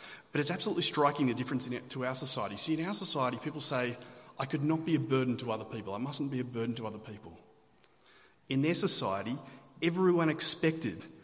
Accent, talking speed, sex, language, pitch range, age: Australian, 210 wpm, male, English, 125-165 Hz, 30-49